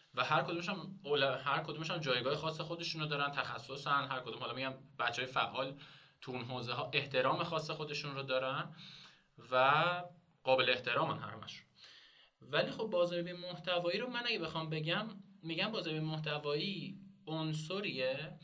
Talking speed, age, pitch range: 150 wpm, 20-39, 130-175 Hz